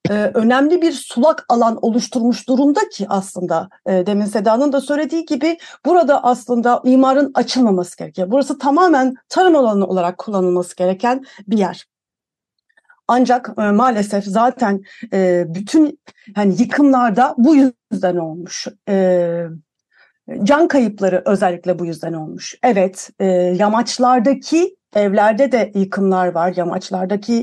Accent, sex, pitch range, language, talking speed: native, female, 195-270 Hz, Turkish, 110 wpm